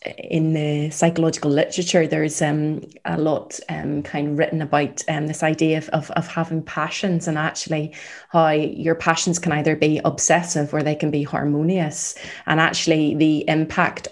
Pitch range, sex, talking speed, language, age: 150-170 Hz, female, 165 wpm, English, 20-39